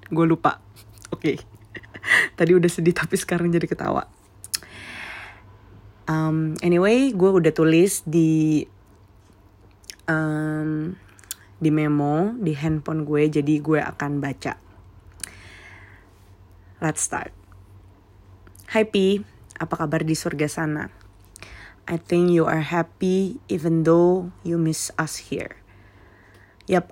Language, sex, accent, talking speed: Indonesian, female, native, 105 wpm